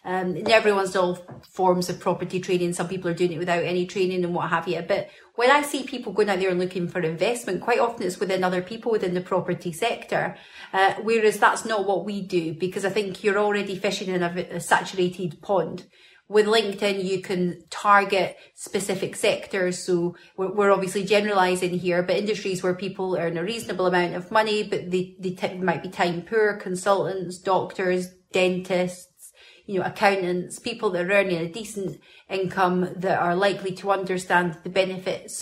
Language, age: English, 30-49